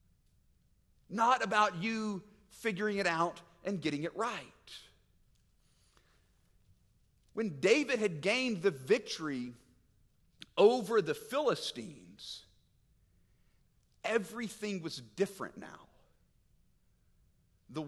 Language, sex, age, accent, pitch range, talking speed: English, male, 40-59, American, 140-230 Hz, 80 wpm